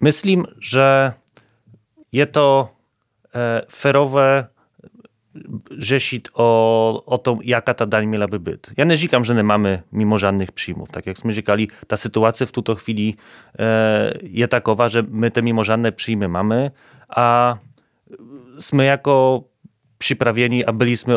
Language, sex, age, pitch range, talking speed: Czech, male, 30-49, 105-125 Hz, 130 wpm